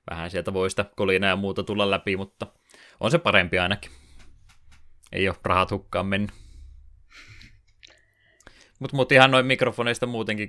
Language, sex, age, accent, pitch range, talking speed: Finnish, male, 20-39, native, 95-110 Hz, 145 wpm